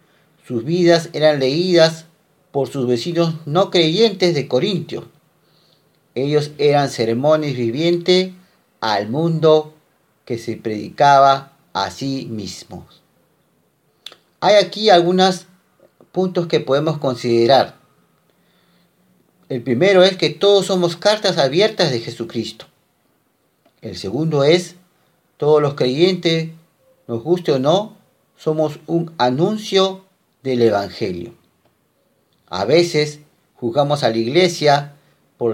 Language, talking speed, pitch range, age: Spanish, 105 wpm, 125-180 Hz, 40-59